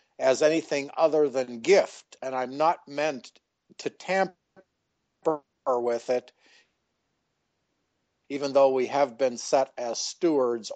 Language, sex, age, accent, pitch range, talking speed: English, male, 50-69, American, 130-160 Hz, 115 wpm